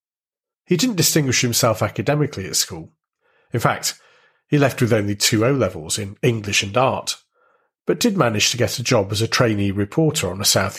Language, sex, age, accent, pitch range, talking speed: English, male, 40-59, British, 105-145 Hz, 185 wpm